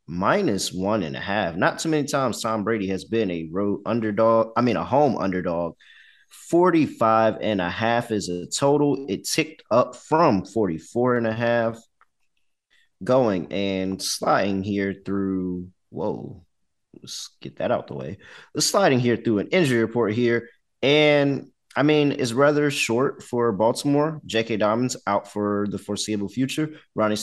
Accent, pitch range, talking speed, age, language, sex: American, 100-130 Hz, 160 wpm, 30-49, English, male